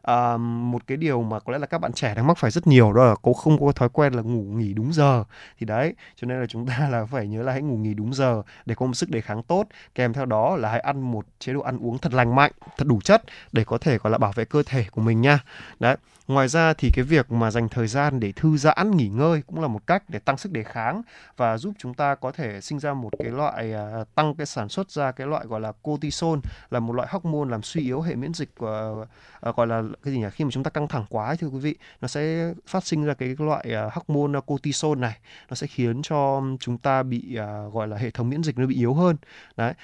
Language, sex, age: Vietnamese, male, 20-39